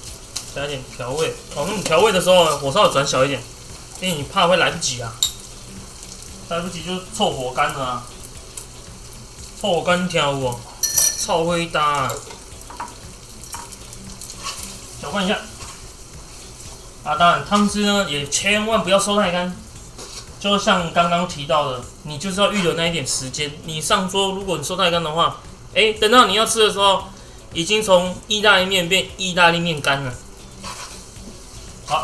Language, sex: Chinese, male